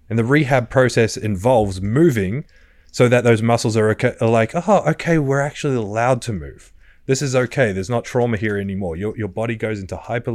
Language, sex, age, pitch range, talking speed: English, male, 20-39, 95-130 Hz, 205 wpm